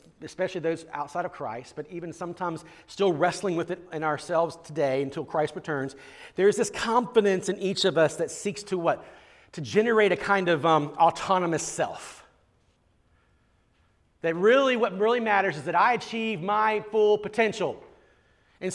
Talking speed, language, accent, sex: 160 wpm, English, American, male